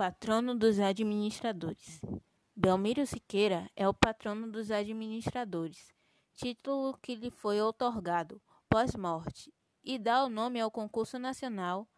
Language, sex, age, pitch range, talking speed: Portuguese, female, 20-39, 195-235 Hz, 115 wpm